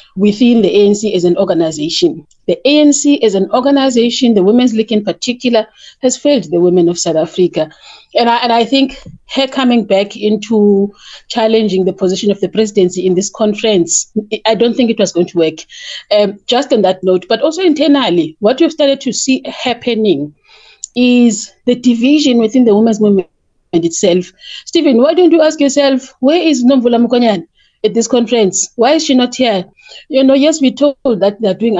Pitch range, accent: 195-260 Hz, Nigerian